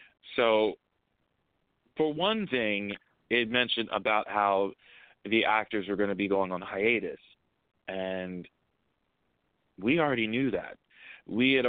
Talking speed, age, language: 125 wpm, 30-49, English